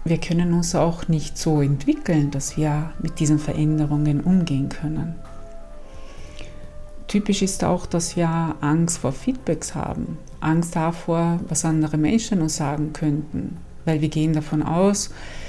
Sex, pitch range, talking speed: female, 150-180 Hz, 140 wpm